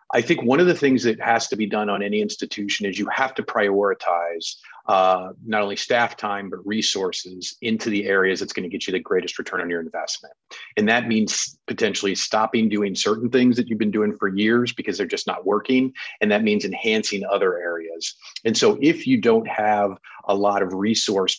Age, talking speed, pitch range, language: 30-49, 210 wpm, 95-115 Hz, English